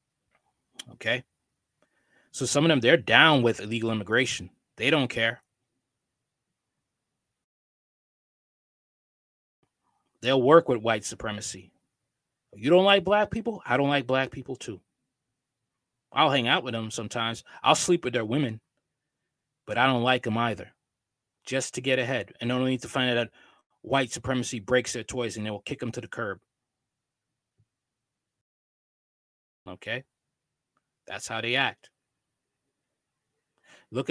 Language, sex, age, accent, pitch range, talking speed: English, male, 20-39, American, 120-145 Hz, 135 wpm